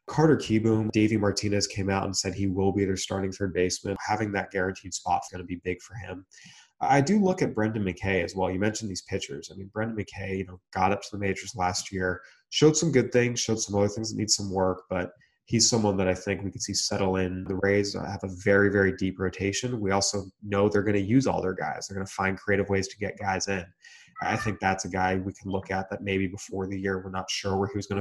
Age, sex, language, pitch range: 20-39, male, English, 95-105 Hz